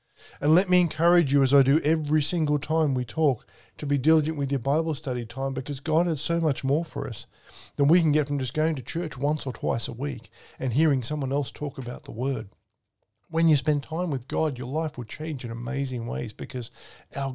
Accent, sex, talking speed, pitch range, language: Australian, male, 230 wpm, 115-155 Hz, English